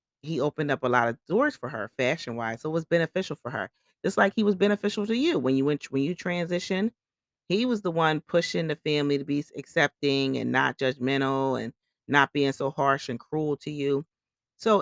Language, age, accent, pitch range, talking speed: English, 30-49, American, 125-155 Hz, 215 wpm